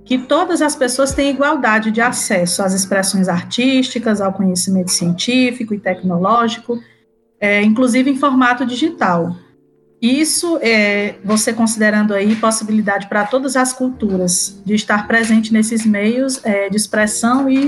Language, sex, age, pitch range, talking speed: Portuguese, female, 20-39, 200-245 Hz, 135 wpm